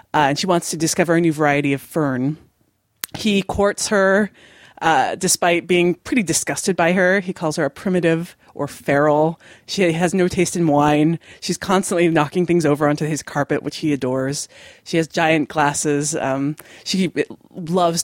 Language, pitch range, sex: English, 155-205 Hz, female